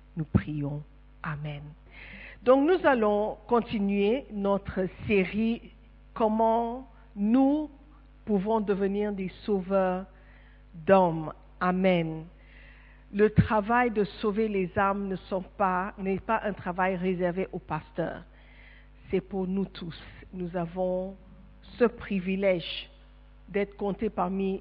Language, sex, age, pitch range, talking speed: French, female, 50-69, 180-210 Hz, 110 wpm